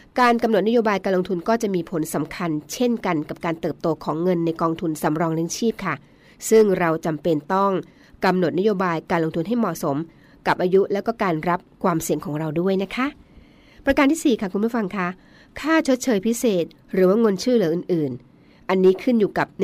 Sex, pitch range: female, 165-215 Hz